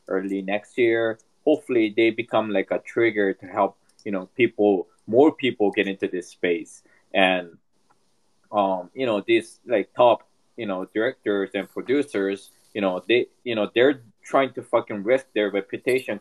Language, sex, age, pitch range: Japanese, male, 20-39, 100-160 Hz